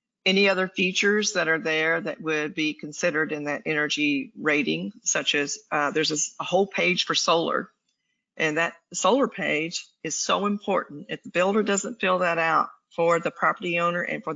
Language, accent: English, American